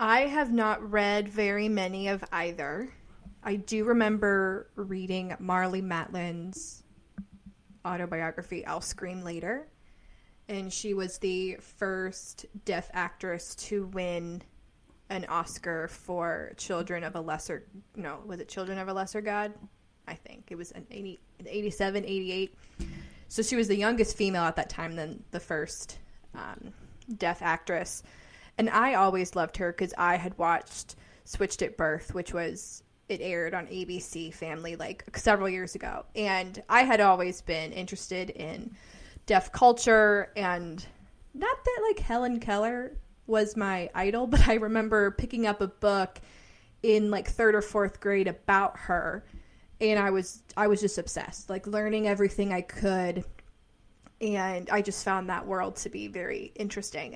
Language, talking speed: English, 150 wpm